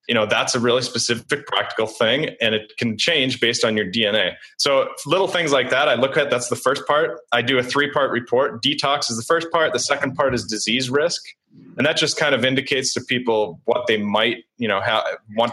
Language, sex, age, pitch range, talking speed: English, male, 30-49, 110-140 Hz, 225 wpm